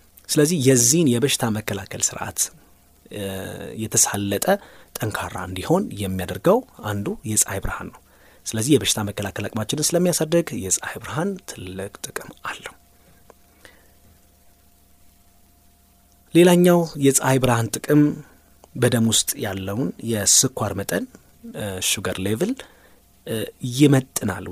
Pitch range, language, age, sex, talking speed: 95-125 Hz, Amharic, 30-49, male, 75 wpm